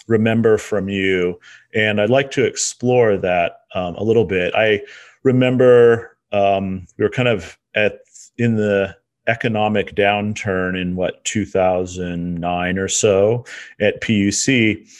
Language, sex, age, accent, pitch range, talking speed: English, male, 40-59, American, 95-120 Hz, 130 wpm